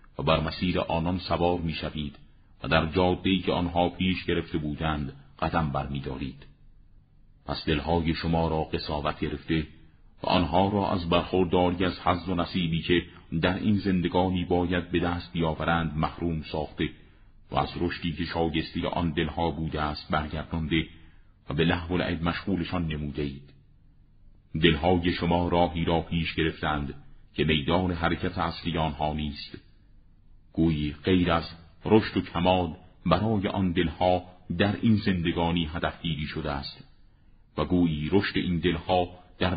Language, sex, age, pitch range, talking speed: Persian, male, 40-59, 80-90 Hz, 140 wpm